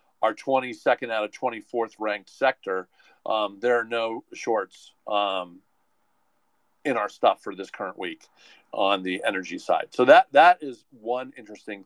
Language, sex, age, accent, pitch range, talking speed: English, male, 50-69, American, 105-130 Hz, 150 wpm